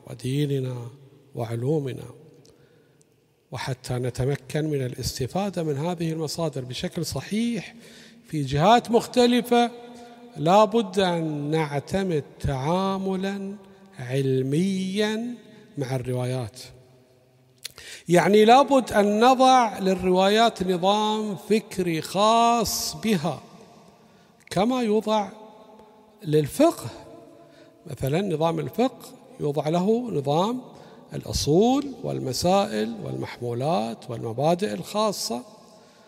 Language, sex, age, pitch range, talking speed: Arabic, male, 50-69, 150-220 Hz, 75 wpm